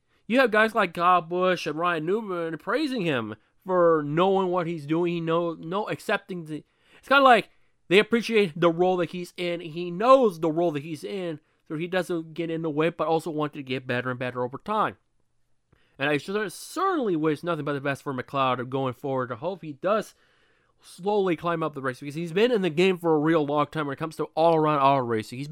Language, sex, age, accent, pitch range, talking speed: English, male, 30-49, American, 145-195 Hz, 220 wpm